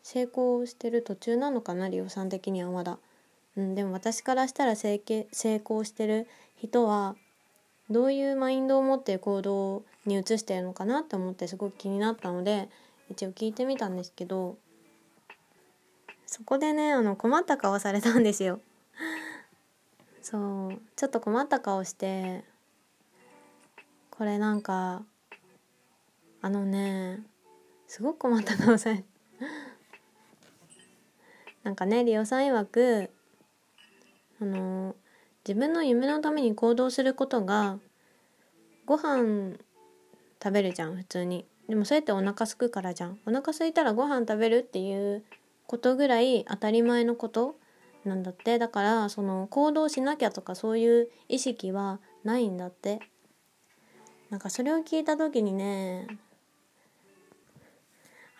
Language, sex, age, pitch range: Japanese, female, 20-39, 195-245 Hz